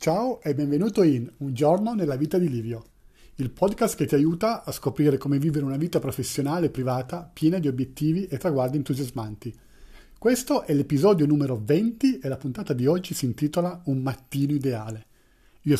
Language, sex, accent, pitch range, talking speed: Italian, male, native, 135-170 Hz, 175 wpm